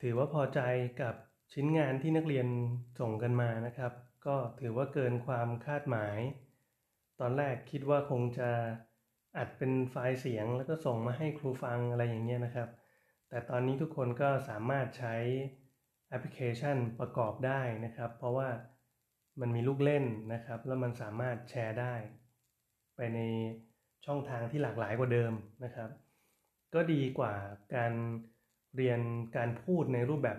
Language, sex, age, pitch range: Thai, male, 30-49, 120-135 Hz